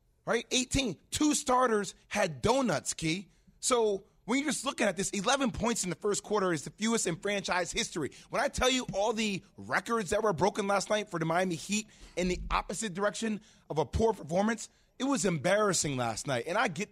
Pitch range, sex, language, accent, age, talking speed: 165-205 Hz, male, English, American, 30-49, 205 wpm